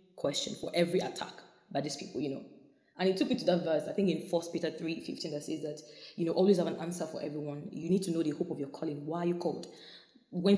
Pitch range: 150-185 Hz